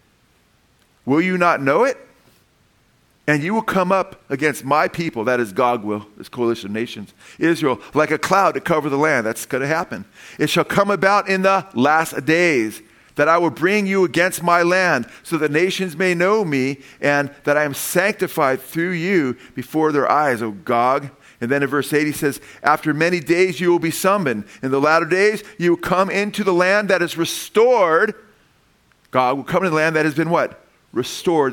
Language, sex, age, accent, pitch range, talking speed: English, male, 50-69, American, 135-175 Hz, 200 wpm